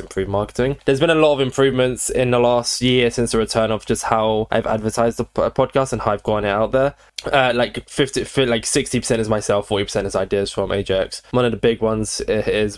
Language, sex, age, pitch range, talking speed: English, male, 10-29, 100-125 Hz, 235 wpm